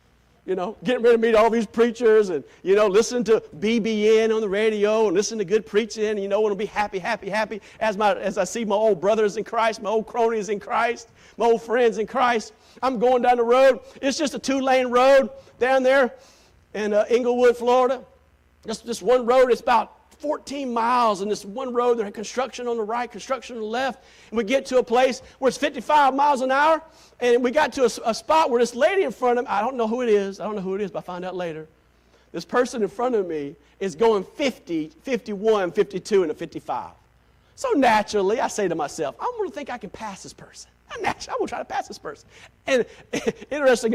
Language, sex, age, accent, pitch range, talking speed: English, male, 50-69, American, 205-250 Hz, 235 wpm